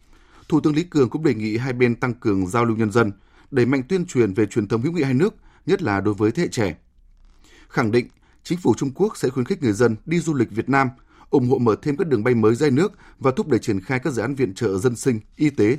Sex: male